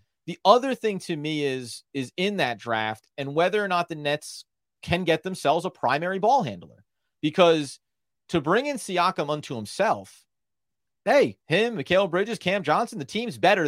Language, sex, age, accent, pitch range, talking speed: English, male, 30-49, American, 125-170 Hz, 170 wpm